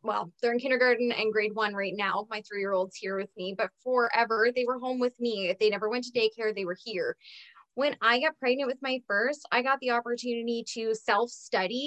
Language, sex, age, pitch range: English, female, 20-39, 230-320 Hz